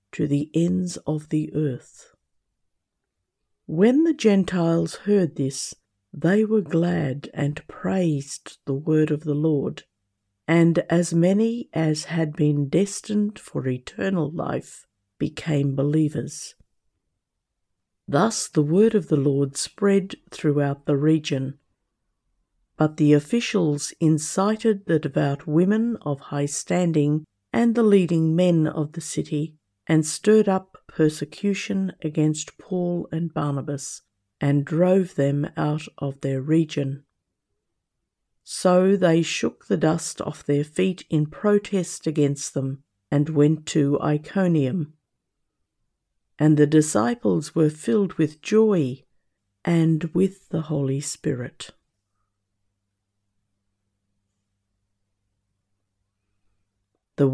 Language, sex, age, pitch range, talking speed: English, female, 50-69, 140-175 Hz, 110 wpm